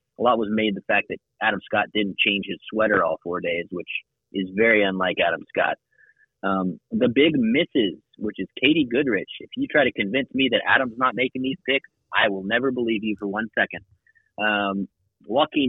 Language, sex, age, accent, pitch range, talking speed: English, male, 30-49, American, 100-125 Hz, 200 wpm